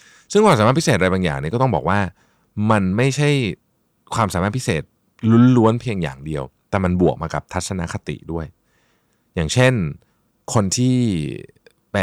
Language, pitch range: Thai, 80-115 Hz